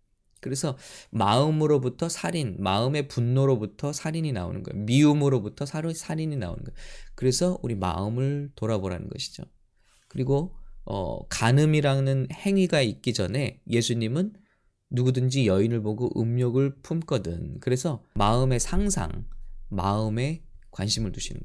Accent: Korean